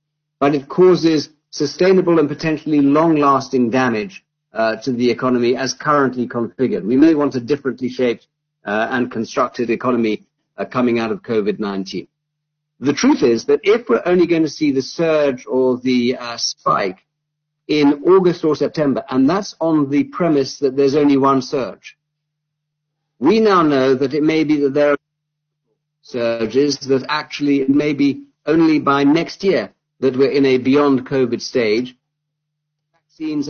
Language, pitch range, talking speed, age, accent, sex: English, 125-150 Hz, 155 wpm, 50-69, British, male